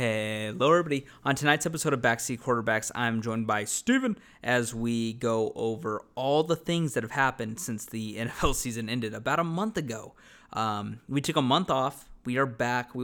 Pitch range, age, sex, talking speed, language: 115-140 Hz, 20-39, male, 190 wpm, English